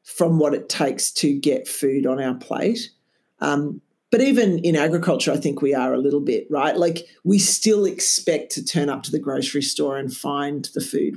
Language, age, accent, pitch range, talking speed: English, 50-69, Australian, 140-180 Hz, 205 wpm